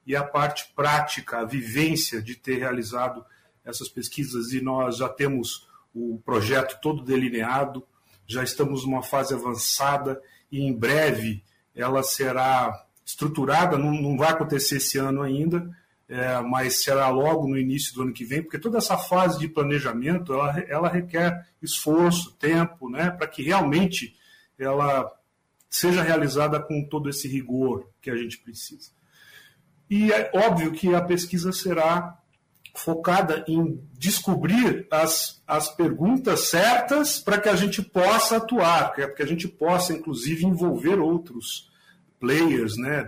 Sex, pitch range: male, 130-165 Hz